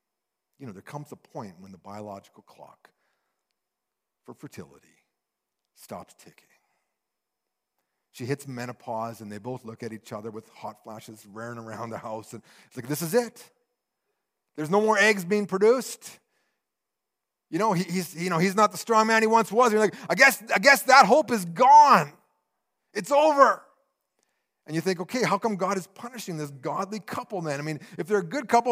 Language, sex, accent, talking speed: English, male, American, 185 wpm